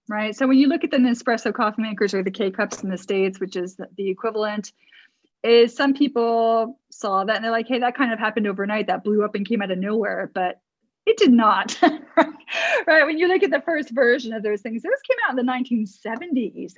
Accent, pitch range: American, 205-255 Hz